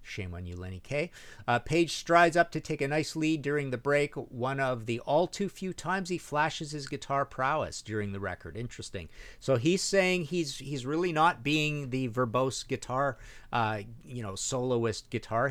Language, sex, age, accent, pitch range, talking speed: English, male, 50-69, American, 110-165 Hz, 190 wpm